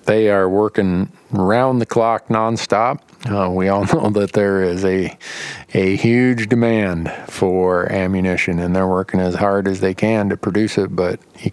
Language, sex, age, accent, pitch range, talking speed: English, male, 50-69, American, 90-110 Hz, 160 wpm